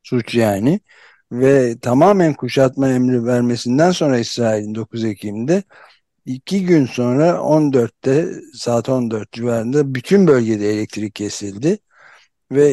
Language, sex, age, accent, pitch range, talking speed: Turkish, male, 60-79, native, 120-150 Hz, 110 wpm